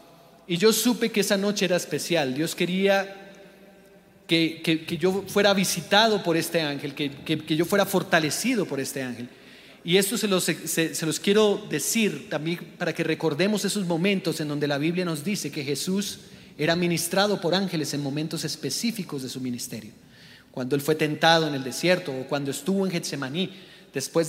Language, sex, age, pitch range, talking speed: English, male, 30-49, 155-195 Hz, 185 wpm